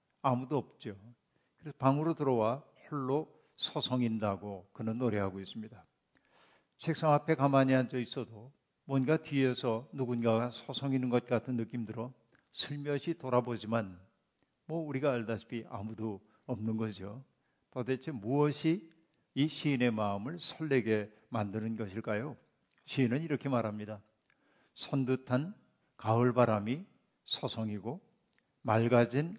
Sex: male